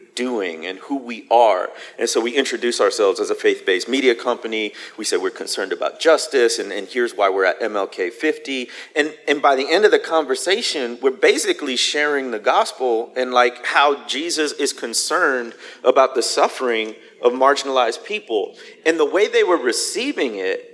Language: English